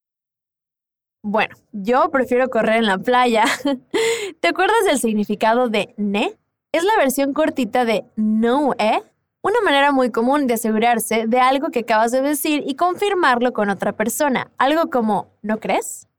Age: 20-39